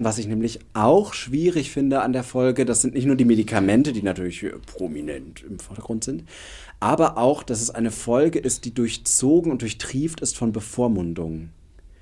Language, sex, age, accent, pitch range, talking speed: German, male, 30-49, German, 105-125 Hz, 175 wpm